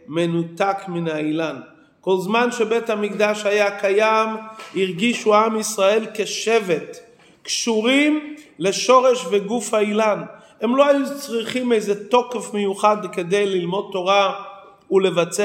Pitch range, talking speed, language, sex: 190-235 Hz, 110 wpm, Hebrew, male